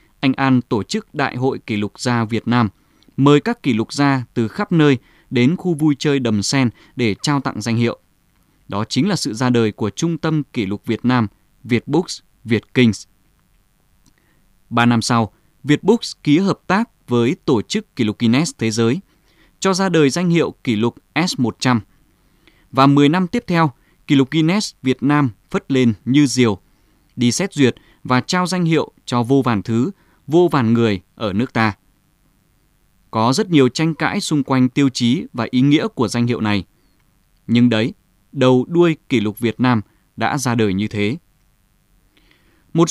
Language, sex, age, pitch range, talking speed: Vietnamese, male, 20-39, 115-150 Hz, 180 wpm